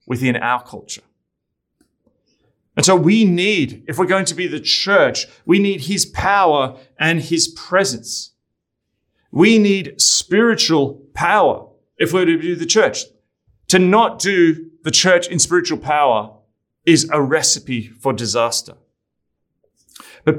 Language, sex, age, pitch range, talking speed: English, male, 30-49, 120-180 Hz, 130 wpm